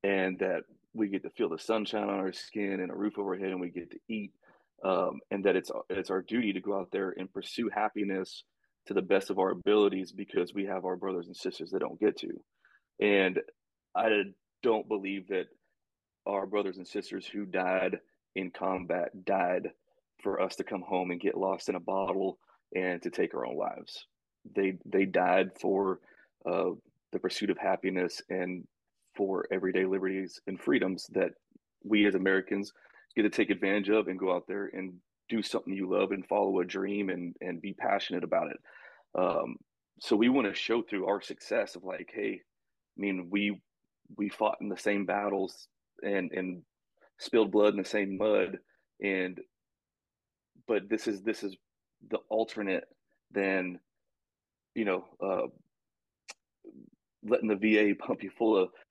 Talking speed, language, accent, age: 175 wpm, English, American, 30-49